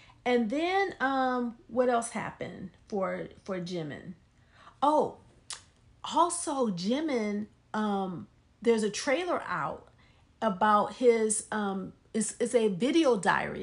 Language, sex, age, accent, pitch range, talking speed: English, female, 40-59, American, 210-270 Hz, 110 wpm